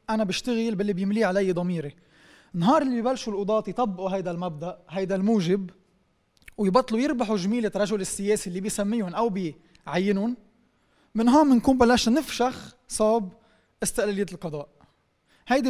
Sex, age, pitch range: male, 20-39, 190-245 Hz